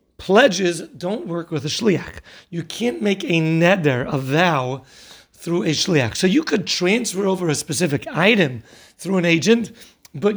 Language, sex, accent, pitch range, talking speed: English, male, American, 165-215 Hz, 160 wpm